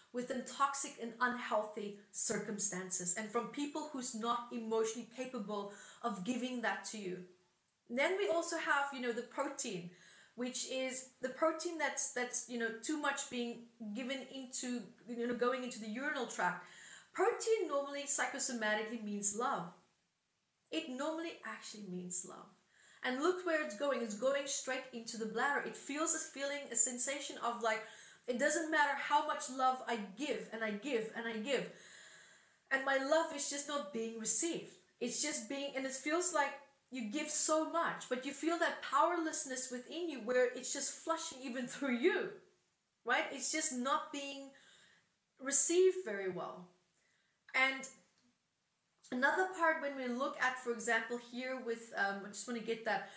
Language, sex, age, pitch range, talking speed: English, female, 30-49, 230-290 Hz, 165 wpm